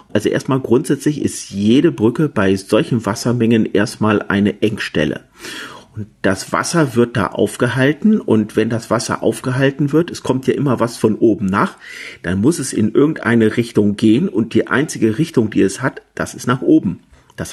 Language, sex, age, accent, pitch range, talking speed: German, male, 50-69, German, 110-130 Hz, 175 wpm